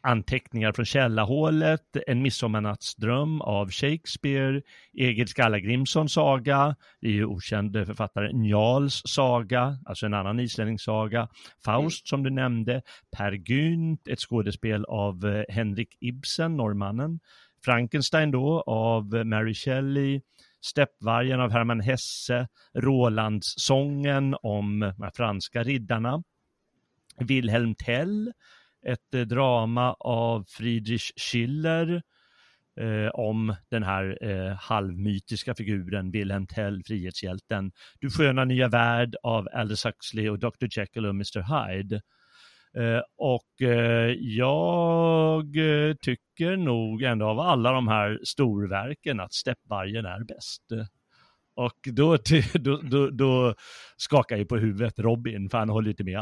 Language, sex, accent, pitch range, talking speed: Swedish, male, native, 110-135 Hz, 115 wpm